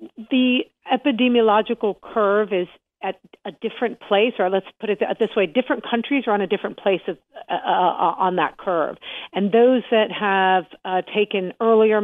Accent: American